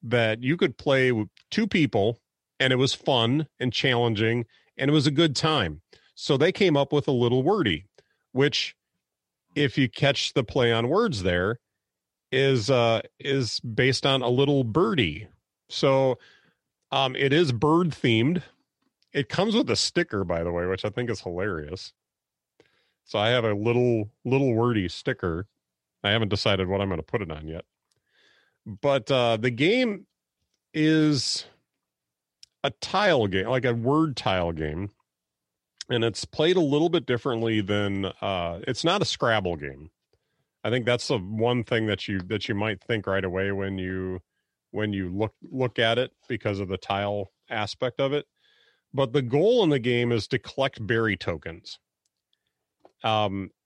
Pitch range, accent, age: 100-135 Hz, American, 40-59